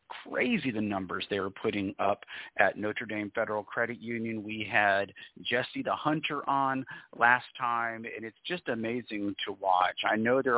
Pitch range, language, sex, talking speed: 110-130 Hz, English, male, 170 wpm